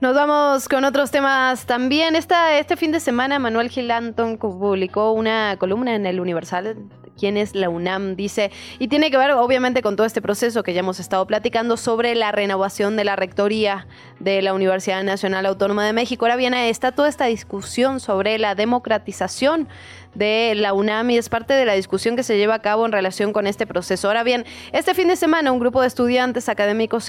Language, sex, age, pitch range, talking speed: Spanish, female, 20-39, 195-245 Hz, 200 wpm